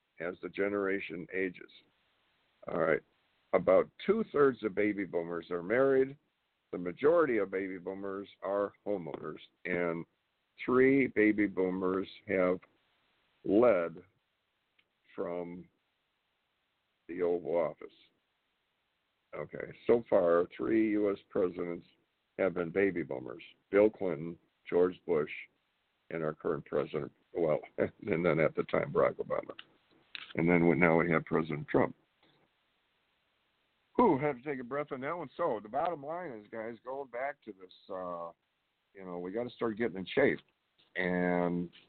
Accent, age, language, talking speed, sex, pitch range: American, 50-69, English, 135 wpm, male, 90-110 Hz